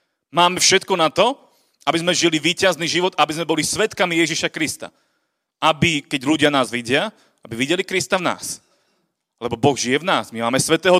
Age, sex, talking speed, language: 30-49, male, 180 wpm, Slovak